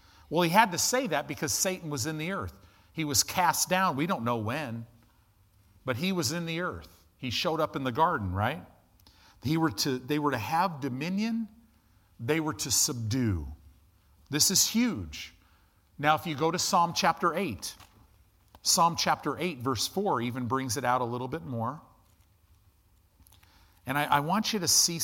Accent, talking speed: American, 175 wpm